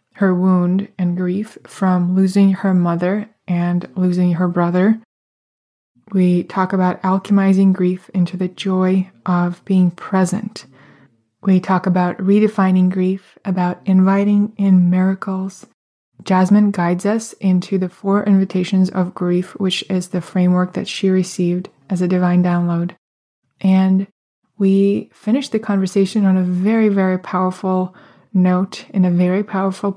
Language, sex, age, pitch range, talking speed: English, female, 20-39, 180-195 Hz, 135 wpm